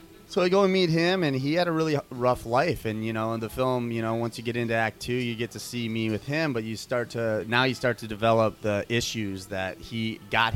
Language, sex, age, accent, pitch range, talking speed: English, male, 30-49, American, 100-120 Hz, 275 wpm